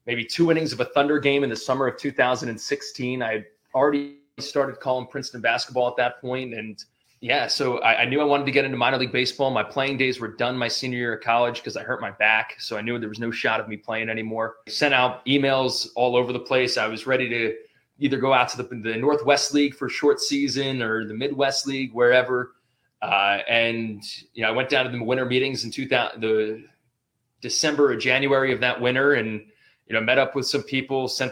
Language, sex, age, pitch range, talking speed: English, male, 20-39, 115-140 Hz, 225 wpm